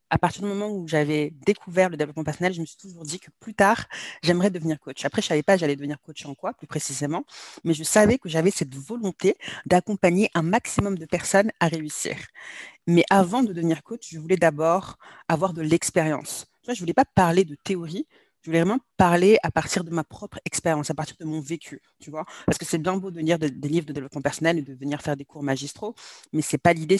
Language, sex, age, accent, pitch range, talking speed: French, female, 40-59, French, 150-185 Hz, 235 wpm